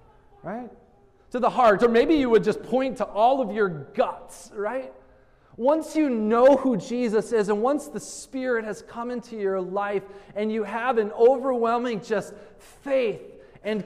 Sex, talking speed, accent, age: male, 170 wpm, American, 30-49